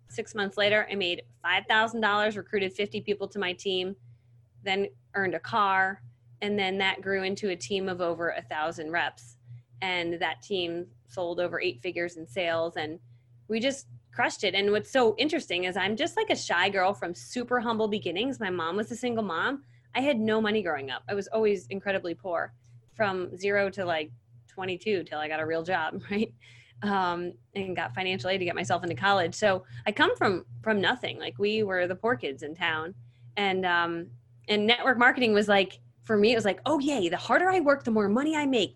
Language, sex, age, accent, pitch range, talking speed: English, female, 20-39, American, 165-220 Hz, 205 wpm